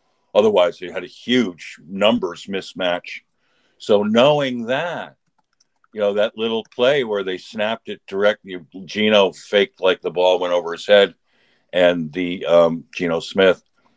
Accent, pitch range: American, 90-105 Hz